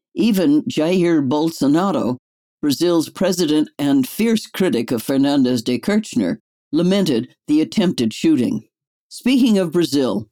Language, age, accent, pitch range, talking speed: English, 60-79, American, 140-225 Hz, 110 wpm